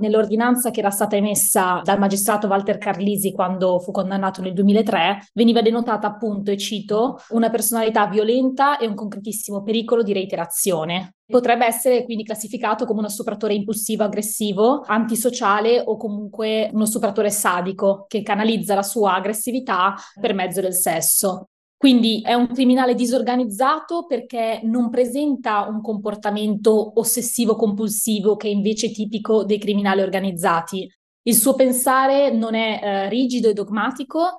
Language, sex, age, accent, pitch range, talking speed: Italian, female, 20-39, native, 205-240 Hz, 135 wpm